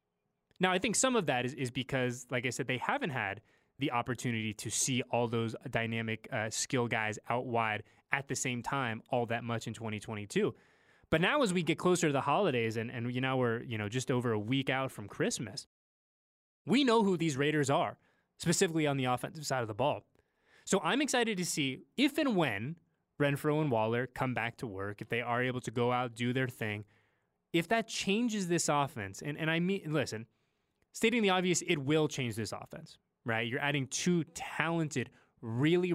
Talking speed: 205 wpm